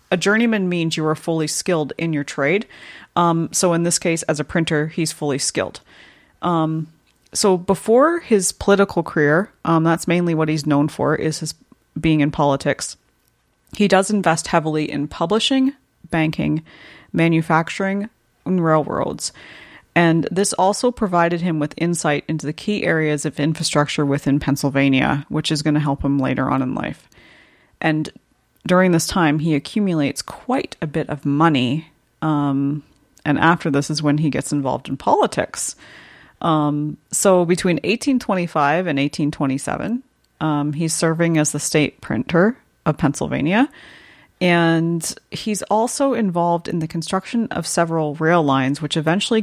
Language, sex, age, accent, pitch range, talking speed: English, female, 30-49, American, 150-180 Hz, 150 wpm